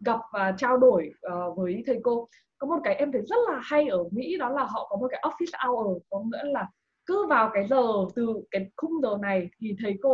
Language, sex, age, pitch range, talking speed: Vietnamese, female, 20-39, 195-280 Hz, 235 wpm